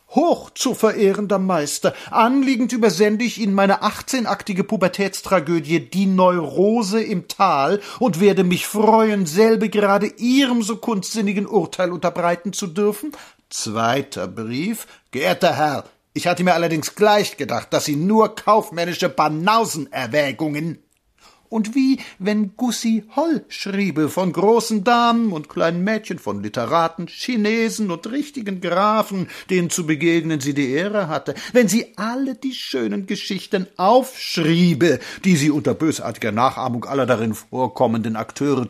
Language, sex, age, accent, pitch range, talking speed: German, male, 50-69, German, 160-225 Hz, 130 wpm